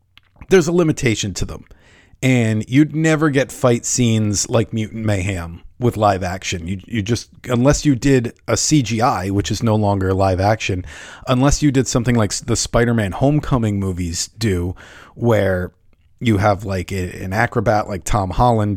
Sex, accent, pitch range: male, American, 100-145 Hz